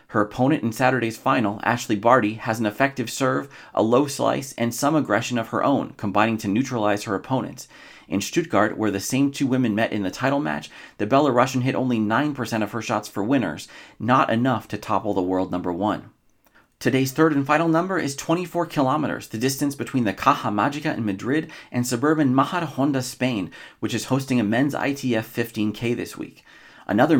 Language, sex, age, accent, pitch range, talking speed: English, male, 40-59, American, 105-135 Hz, 190 wpm